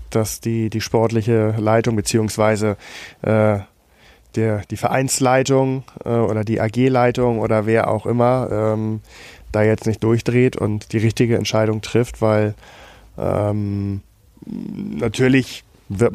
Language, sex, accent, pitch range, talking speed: German, male, German, 105-115 Hz, 115 wpm